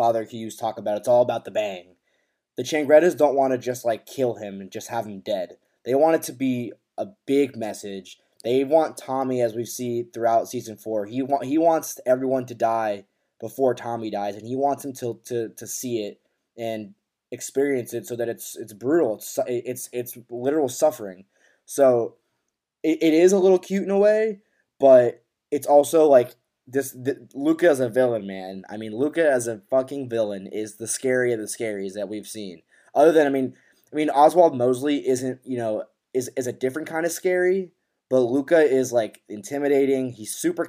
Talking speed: 195 wpm